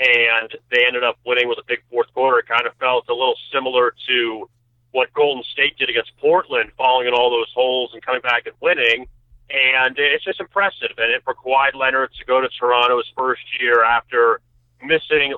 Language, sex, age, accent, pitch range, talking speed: English, male, 40-59, American, 125-165 Hz, 200 wpm